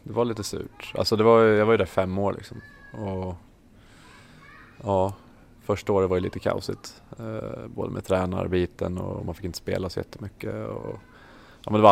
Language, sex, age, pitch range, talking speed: English, male, 20-39, 95-115 Hz, 185 wpm